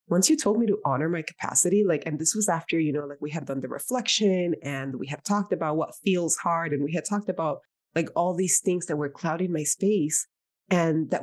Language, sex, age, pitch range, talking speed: English, female, 20-39, 155-200 Hz, 240 wpm